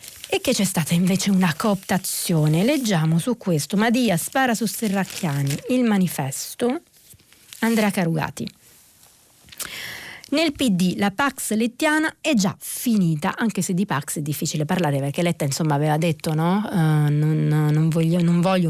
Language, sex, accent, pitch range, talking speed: Italian, female, native, 165-220 Hz, 150 wpm